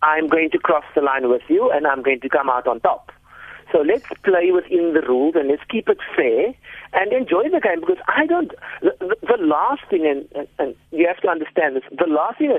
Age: 50-69